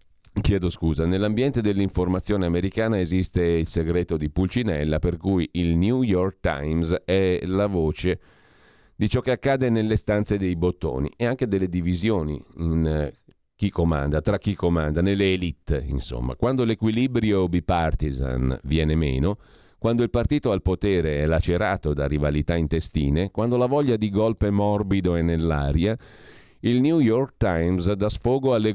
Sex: male